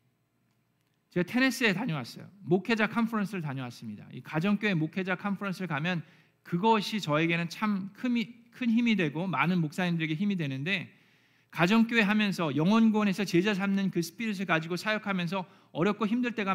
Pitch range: 155-210 Hz